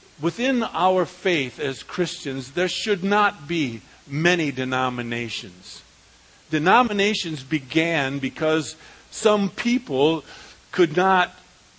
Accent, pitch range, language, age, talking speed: American, 145-185 Hz, English, 50-69, 90 wpm